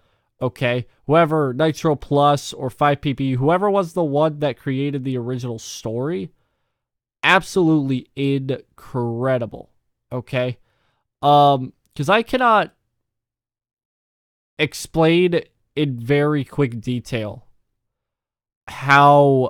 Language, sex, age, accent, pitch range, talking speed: English, male, 20-39, American, 120-165 Hz, 85 wpm